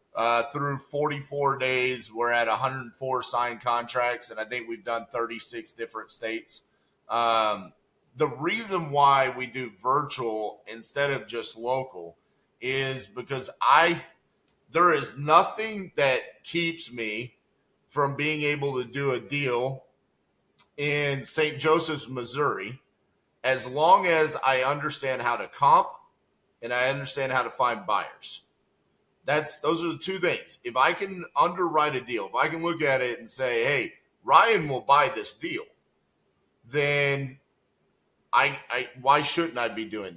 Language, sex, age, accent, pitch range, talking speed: English, male, 30-49, American, 125-155 Hz, 145 wpm